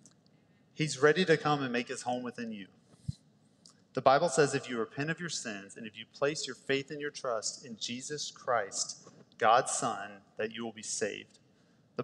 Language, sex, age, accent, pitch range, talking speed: English, male, 30-49, American, 115-145 Hz, 195 wpm